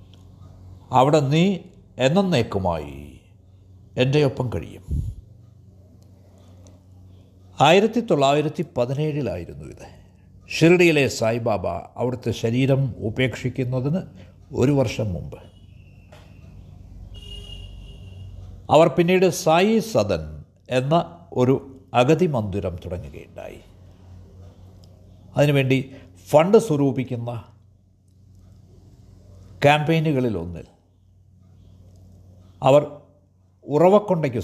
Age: 60-79